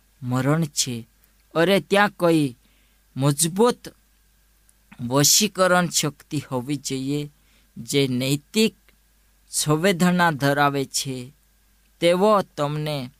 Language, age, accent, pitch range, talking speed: Gujarati, 20-39, native, 135-175 Hz, 65 wpm